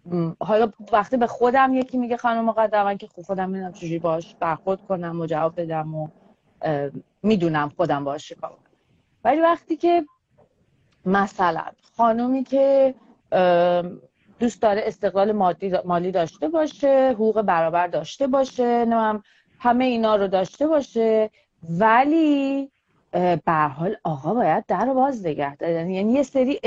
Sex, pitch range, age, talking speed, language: female, 175-240 Hz, 30-49, 125 wpm, Persian